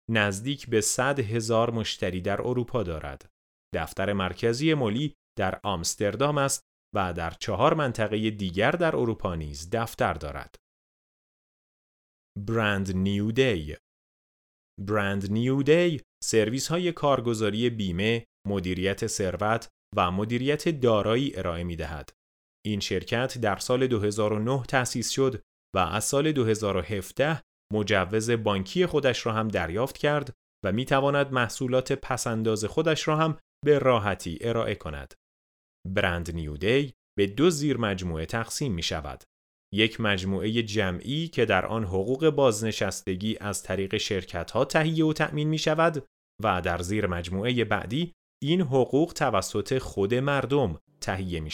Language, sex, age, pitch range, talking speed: Persian, male, 30-49, 95-130 Hz, 125 wpm